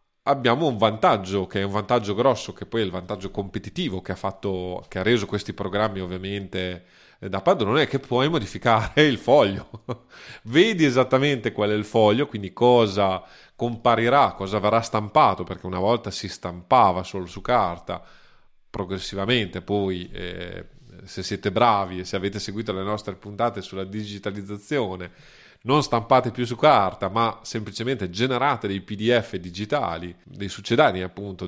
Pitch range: 95-120 Hz